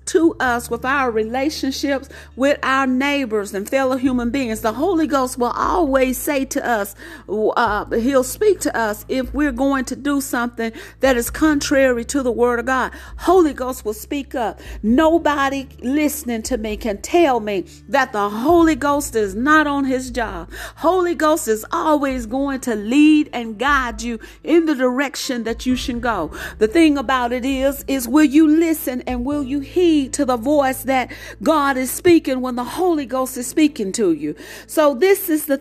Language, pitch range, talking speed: English, 245-300 Hz, 185 wpm